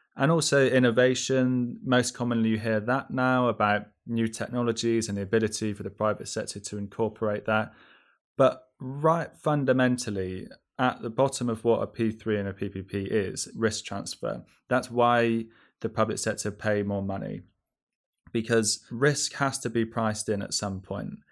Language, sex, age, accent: English, male, 20-39, British